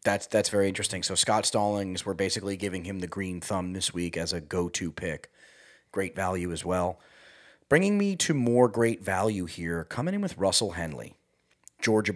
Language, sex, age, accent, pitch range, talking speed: English, male, 30-49, American, 95-125 Hz, 185 wpm